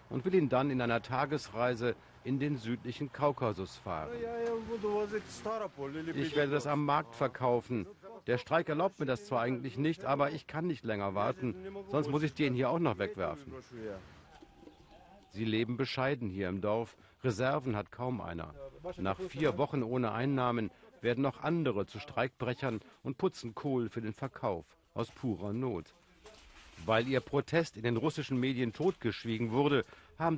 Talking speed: 155 wpm